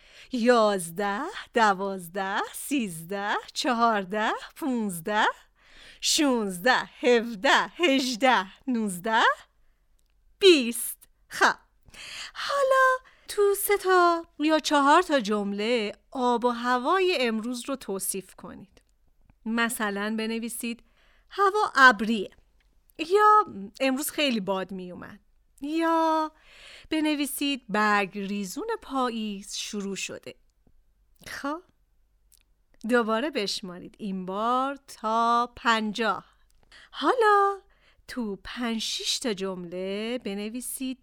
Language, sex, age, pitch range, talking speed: Persian, female, 40-59, 210-280 Hz, 85 wpm